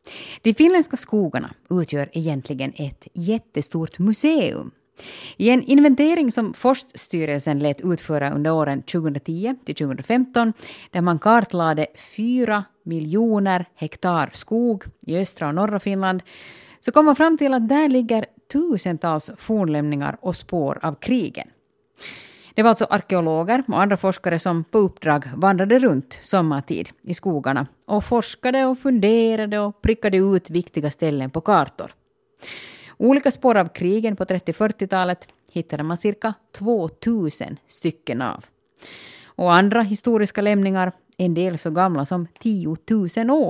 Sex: female